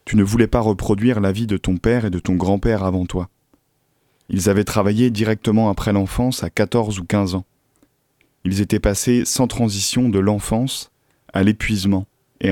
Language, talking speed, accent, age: French, 175 wpm, French, 20-39